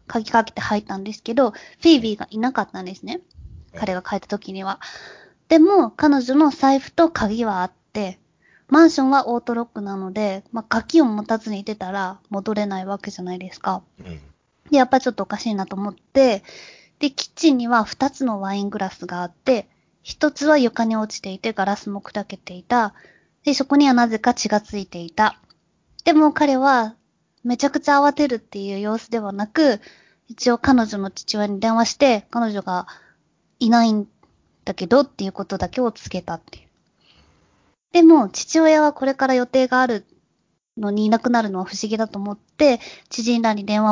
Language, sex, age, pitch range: Japanese, female, 20-39, 200-270 Hz